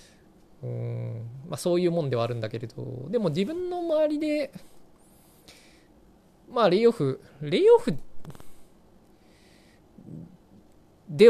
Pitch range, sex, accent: 125-185 Hz, male, native